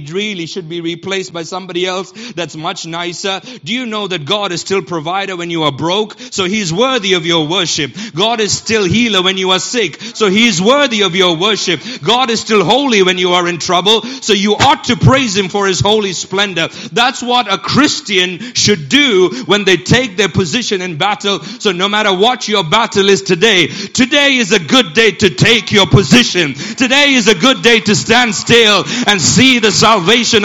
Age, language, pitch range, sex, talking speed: 40-59, English, 160-220 Hz, male, 205 wpm